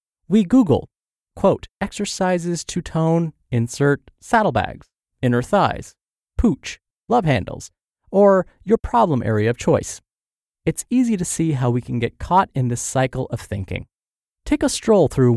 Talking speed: 145 wpm